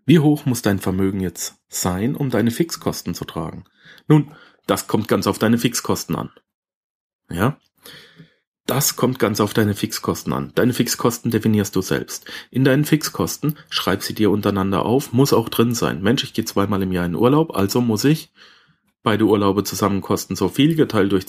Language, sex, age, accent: German, male, 40-59, German